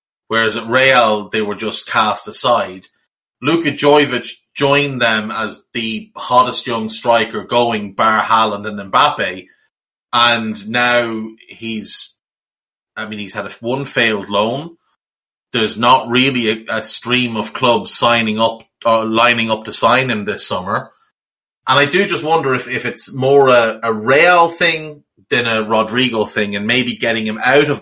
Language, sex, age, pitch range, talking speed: English, male, 30-49, 110-140 Hz, 160 wpm